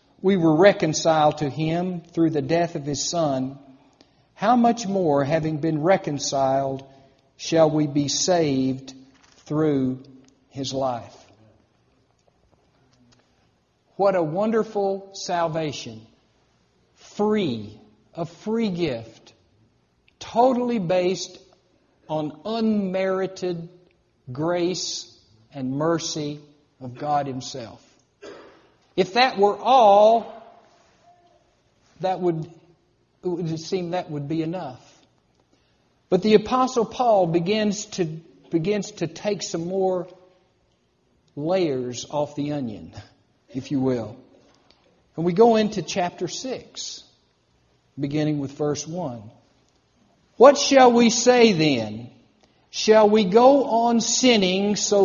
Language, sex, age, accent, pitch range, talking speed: English, male, 50-69, American, 135-195 Hz, 100 wpm